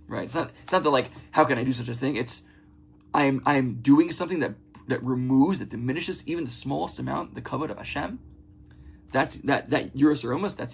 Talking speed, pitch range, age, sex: 205 wpm, 100-135 Hz, 20-39, male